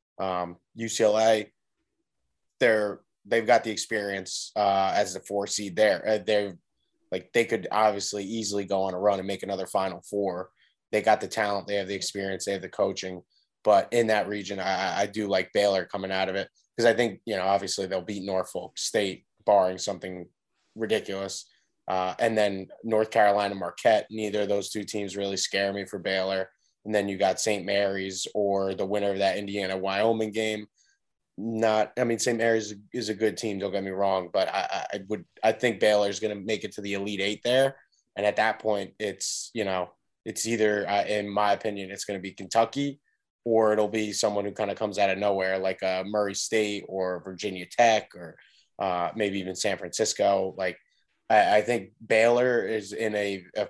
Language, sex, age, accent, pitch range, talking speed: English, male, 20-39, American, 95-105 Hz, 200 wpm